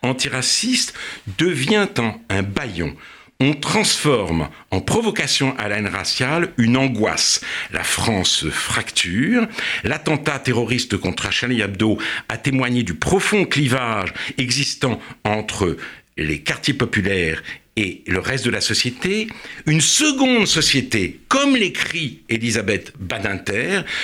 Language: French